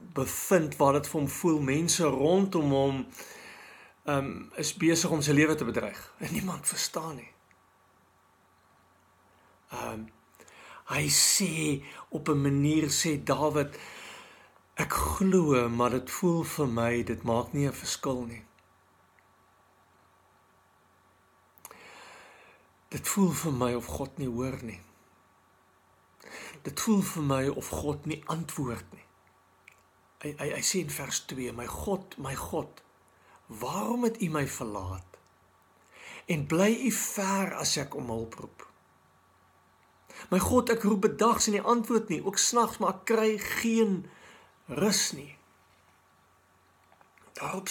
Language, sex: English, male